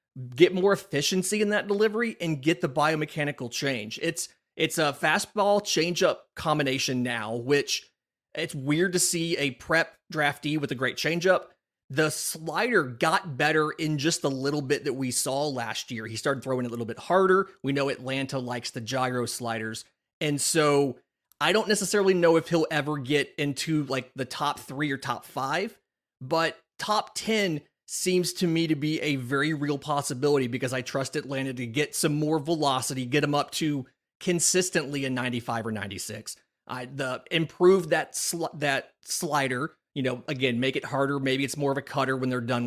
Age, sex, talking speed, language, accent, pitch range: 30-49, male, 180 wpm, English, American, 130-160 Hz